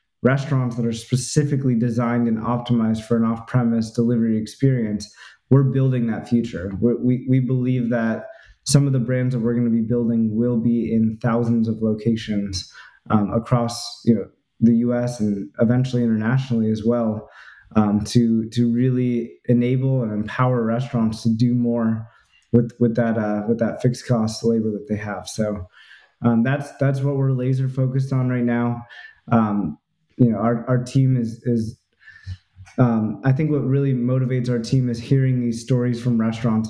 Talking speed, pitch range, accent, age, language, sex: 165 wpm, 115-125 Hz, American, 20-39, English, male